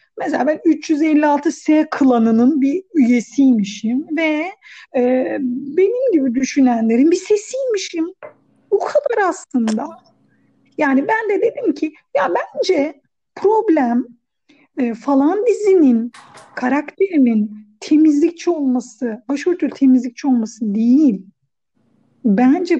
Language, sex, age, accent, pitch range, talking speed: Turkish, female, 50-69, native, 240-320 Hz, 90 wpm